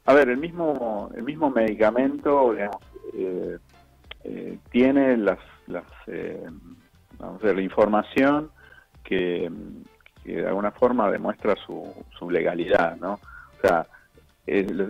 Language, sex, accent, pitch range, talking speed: Spanish, male, Argentinian, 90-120 Hz, 130 wpm